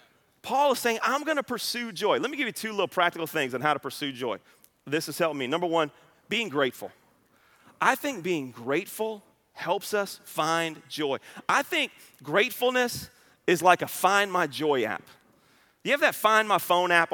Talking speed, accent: 190 wpm, American